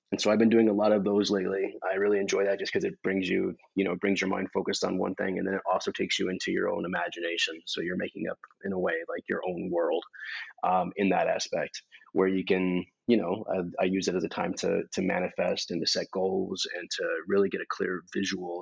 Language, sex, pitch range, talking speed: English, male, 100-115 Hz, 260 wpm